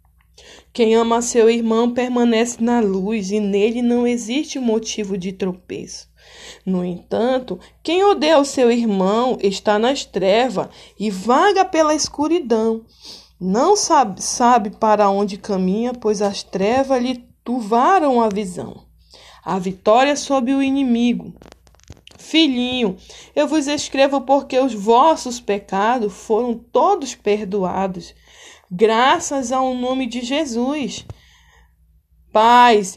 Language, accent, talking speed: Portuguese, Brazilian, 115 wpm